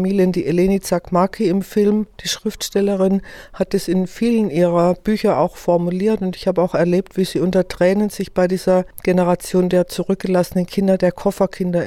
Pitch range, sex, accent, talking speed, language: 170-190 Hz, female, German, 165 wpm, German